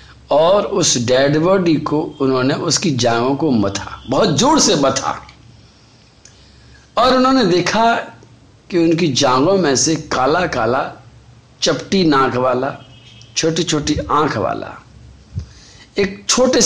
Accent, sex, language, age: native, male, Hindi, 50-69